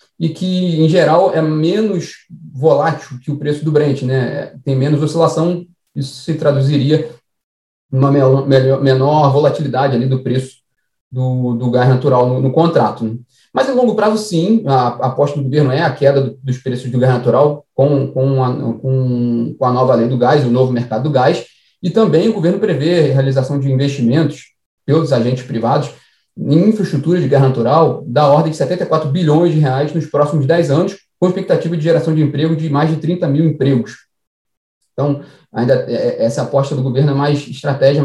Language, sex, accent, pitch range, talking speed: Portuguese, male, Brazilian, 130-160 Hz, 180 wpm